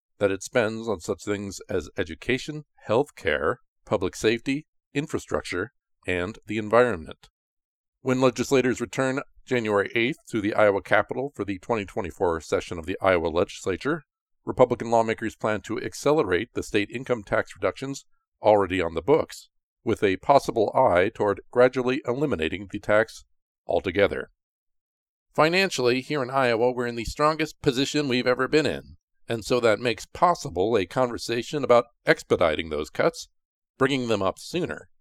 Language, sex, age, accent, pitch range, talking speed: English, male, 50-69, American, 105-130 Hz, 145 wpm